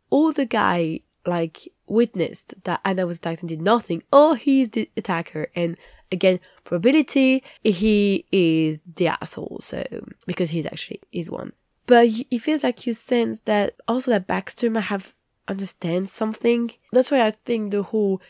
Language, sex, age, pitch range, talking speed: English, female, 20-39, 170-220 Hz, 165 wpm